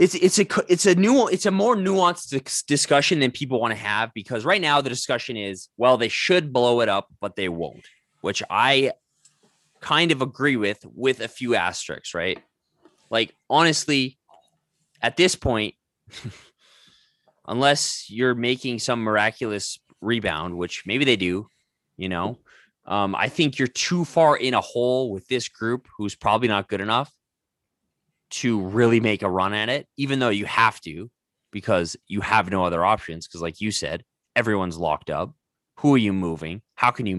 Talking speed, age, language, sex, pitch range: 175 wpm, 20-39, English, male, 105-145 Hz